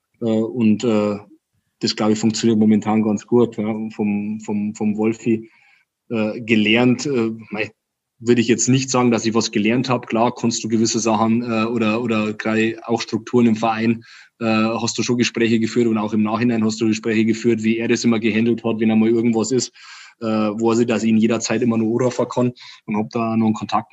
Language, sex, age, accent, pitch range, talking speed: German, male, 20-39, German, 110-115 Hz, 205 wpm